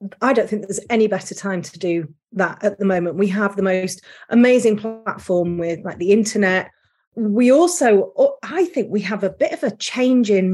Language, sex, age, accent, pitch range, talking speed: English, female, 40-59, British, 185-230 Hz, 200 wpm